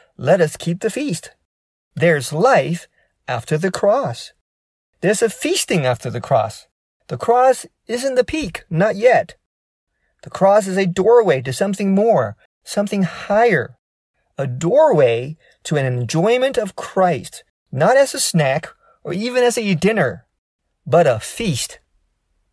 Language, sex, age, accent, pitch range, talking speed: English, male, 40-59, American, 130-205 Hz, 140 wpm